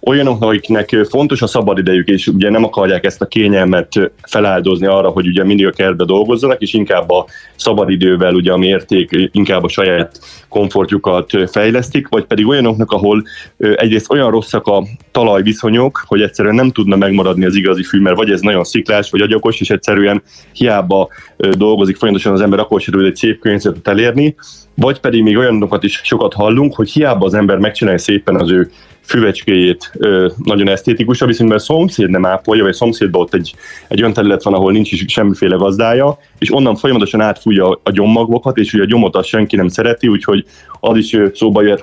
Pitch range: 95-110 Hz